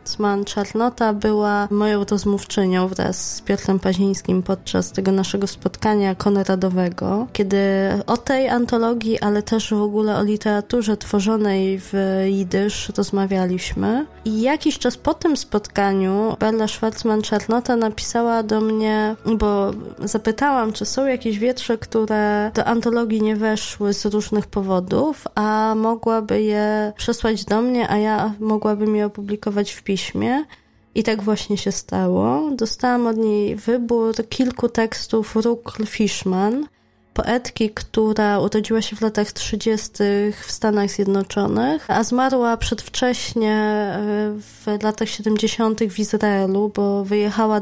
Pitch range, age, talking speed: 200-225 Hz, 20-39, 125 wpm